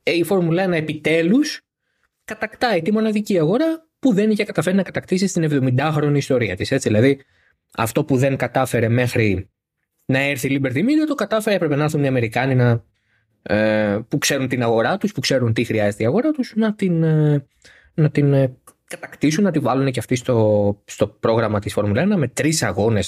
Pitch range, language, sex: 125-190 Hz, Greek, male